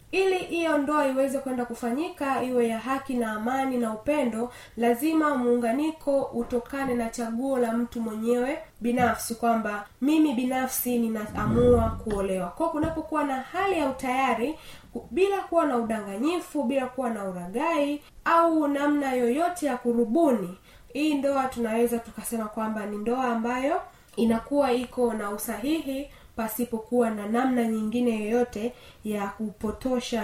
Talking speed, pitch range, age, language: 130 wpm, 215-265 Hz, 20-39, Swahili